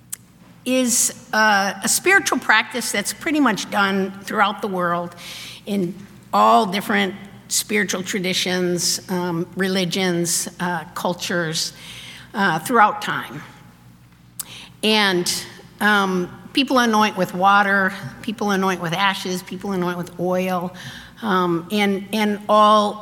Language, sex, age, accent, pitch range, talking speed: English, female, 50-69, American, 180-210 Hz, 110 wpm